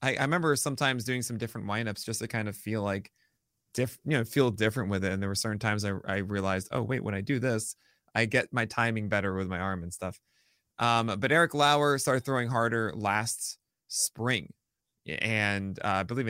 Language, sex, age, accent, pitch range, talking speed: English, male, 20-39, American, 100-125 Hz, 205 wpm